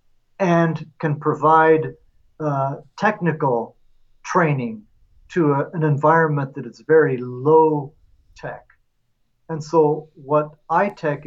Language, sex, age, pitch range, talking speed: English, male, 50-69, 135-165 Hz, 100 wpm